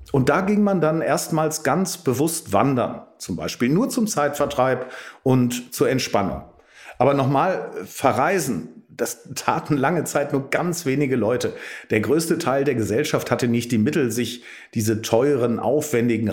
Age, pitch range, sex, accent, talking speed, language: 40-59, 110-145 Hz, male, German, 150 wpm, German